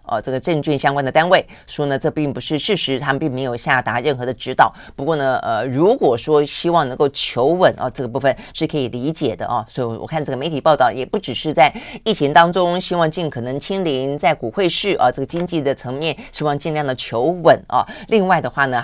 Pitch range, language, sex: 130-170 Hz, Chinese, female